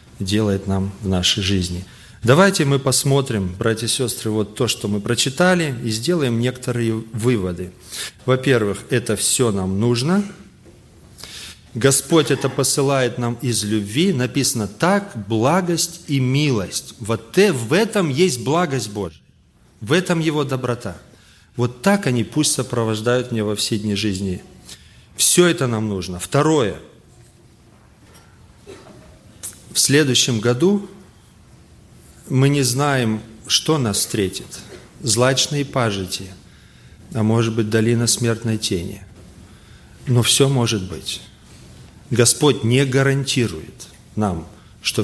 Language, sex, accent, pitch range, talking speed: Russian, male, native, 105-135 Hz, 115 wpm